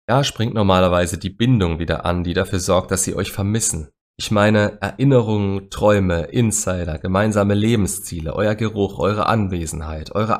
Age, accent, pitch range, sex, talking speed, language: 30-49, German, 85-110 Hz, male, 150 wpm, German